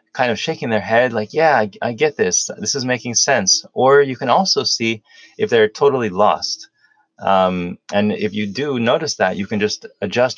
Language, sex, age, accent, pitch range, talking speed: English, male, 20-39, American, 105-145 Hz, 200 wpm